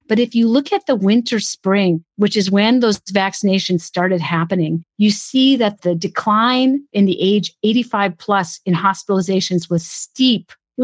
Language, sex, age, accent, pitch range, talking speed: English, female, 50-69, American, 175-215 Hz, 155 wpm